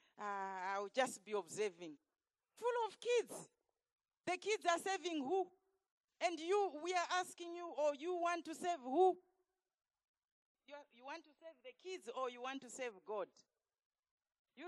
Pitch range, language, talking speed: 245-330 Hz, English, 170 wpm